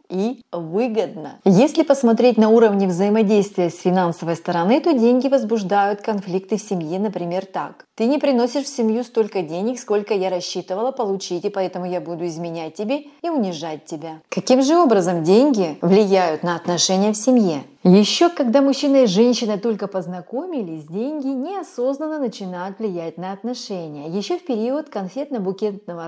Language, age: Russian, 30-49